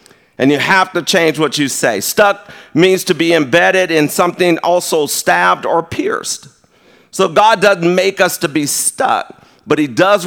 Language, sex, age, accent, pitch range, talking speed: English, male, 50-69, American, 135-190 Hz, 175 wpm